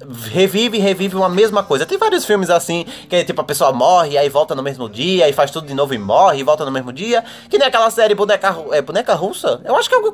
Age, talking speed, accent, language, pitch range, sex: 20-39, 270 wpm, Brazilian, Portuguese, 150-210 Hz, male